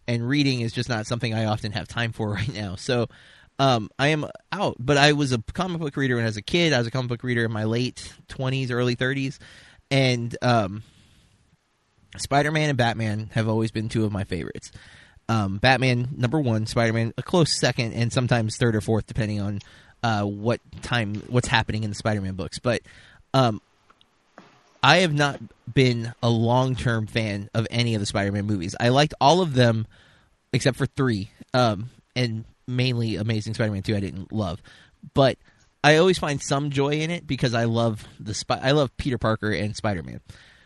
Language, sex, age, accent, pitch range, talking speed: English, male, 20-39, American, 110-130 Hz, 190 wpm